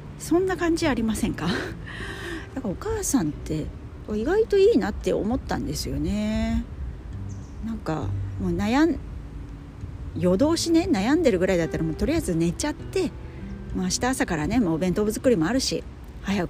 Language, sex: Japanese, female